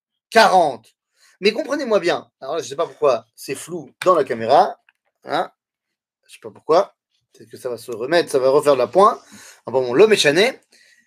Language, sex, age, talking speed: French, male, 30-49, 185 wpm